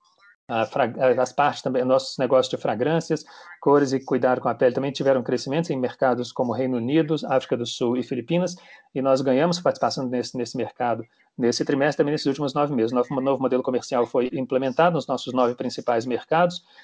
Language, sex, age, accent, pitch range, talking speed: Portuguese, male, 40-59, Brazilian, 125-150 Hz, 185 wpm